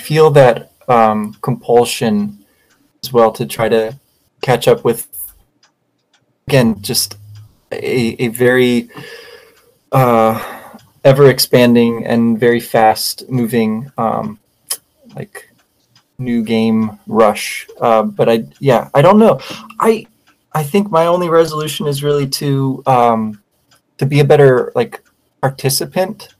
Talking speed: 120 wpm